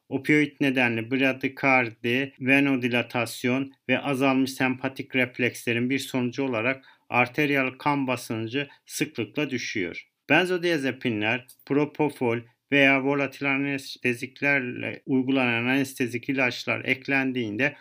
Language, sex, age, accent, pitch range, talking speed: Turkish, male, 50-69, native, 130-145 Hz, 85 wpm